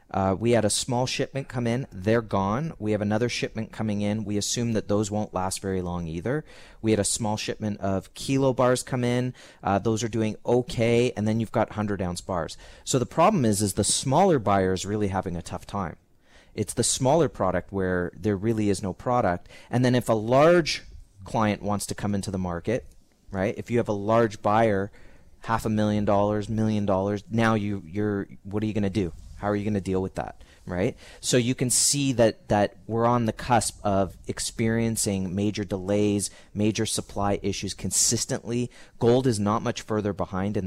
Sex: male